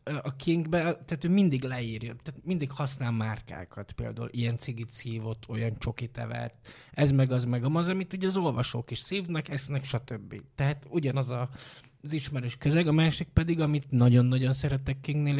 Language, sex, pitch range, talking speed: Hungarian, male, 120-140 Hz, 170 wpm